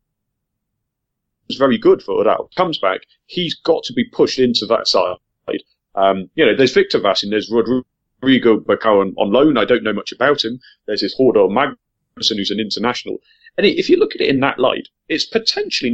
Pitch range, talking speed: 105-145 Hz, 190 wpm